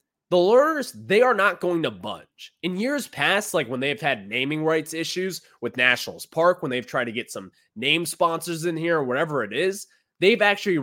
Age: 20-39